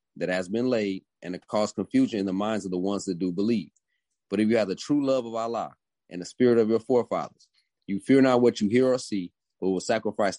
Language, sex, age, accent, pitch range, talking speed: English, male, 30-49, American, 95-120 Hz, 250 wpm